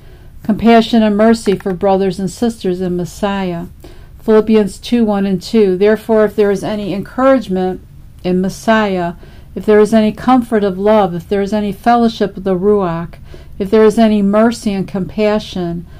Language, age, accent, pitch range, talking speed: English, 50-69, American, 185-215 Hz, 165 wpm